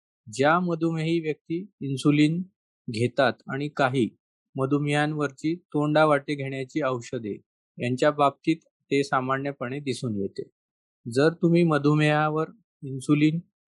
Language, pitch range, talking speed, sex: English, 130-155 Hz, 115 wpm, male